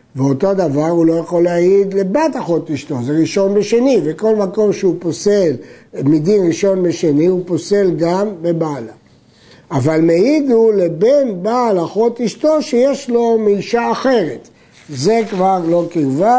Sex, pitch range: male, 165-230 Hz